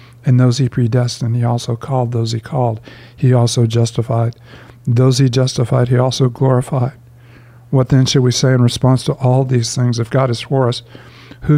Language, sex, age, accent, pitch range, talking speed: English, male, 50-69, American, 120-130 Hz, 185 wpm